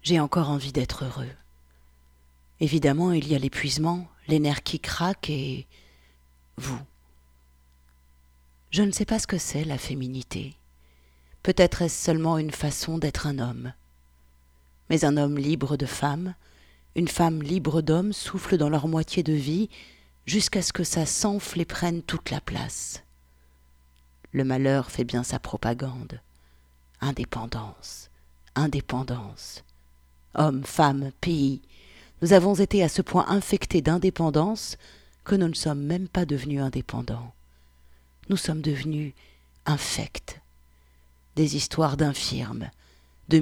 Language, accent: French, French